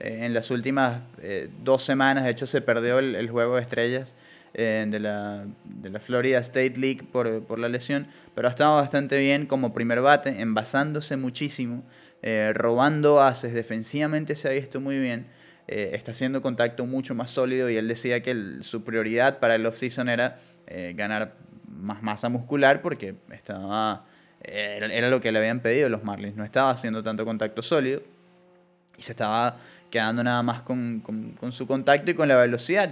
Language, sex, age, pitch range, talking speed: English, male, 20-39, 110-135 Hz, 185 wpm